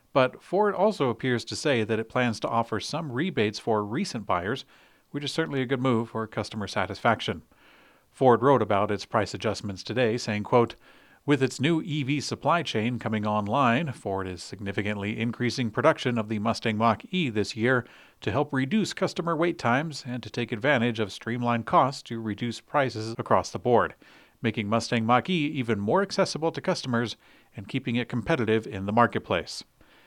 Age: 40-59